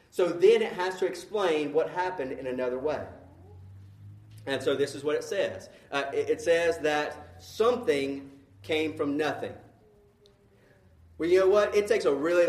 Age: 30-49